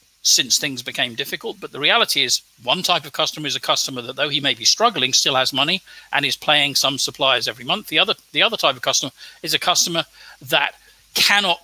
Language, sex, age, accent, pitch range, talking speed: English, male, 50-69, British, 135-175 Hz, 220 wpm